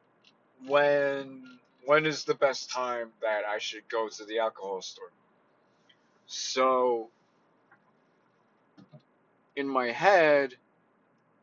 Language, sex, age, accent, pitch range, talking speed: English, male, 30-49, American, 115-150 Hz, 95 wpm